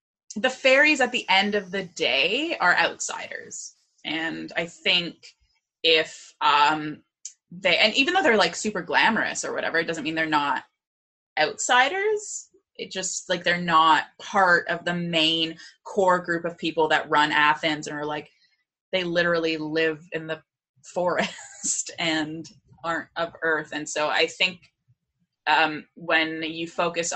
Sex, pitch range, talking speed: female, 155-190 Hz, 150 wpm